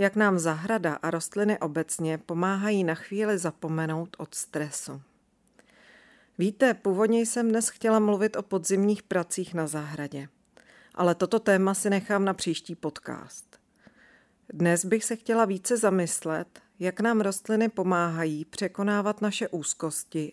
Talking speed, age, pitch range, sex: 130 wpm, 40-59, 165-215 Hz, female